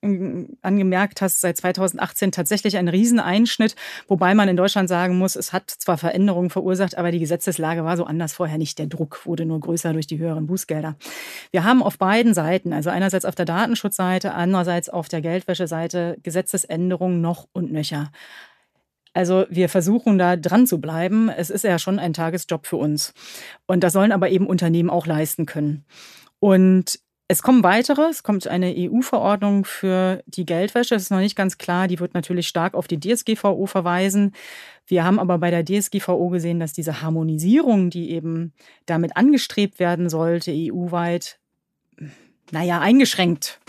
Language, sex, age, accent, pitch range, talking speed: German, female, 30-49, German, 170-195 Hz, 165 wpm